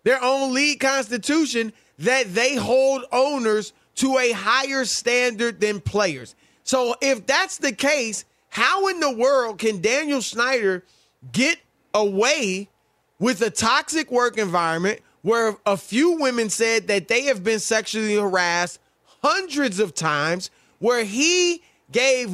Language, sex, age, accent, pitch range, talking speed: English, male, 30-49, American, 195-265 Hz, 135 wpm